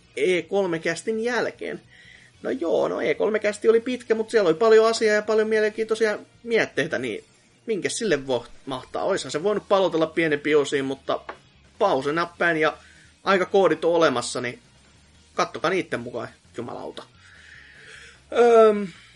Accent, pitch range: native, 150-220 Hz